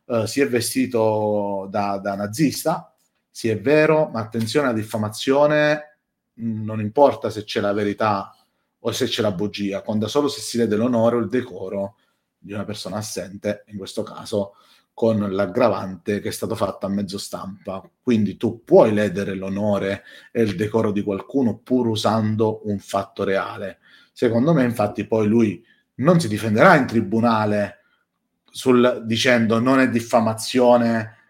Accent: native